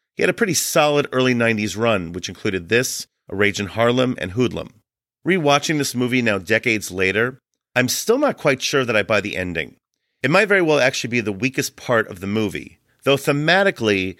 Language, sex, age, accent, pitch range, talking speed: English, male, 40-59, American, 105-140 Hz, 200 wpm